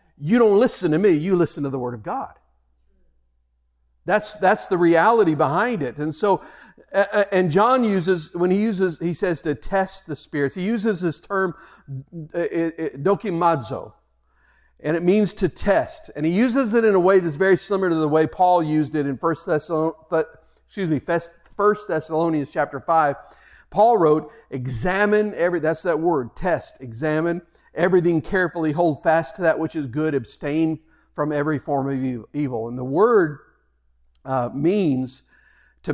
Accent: American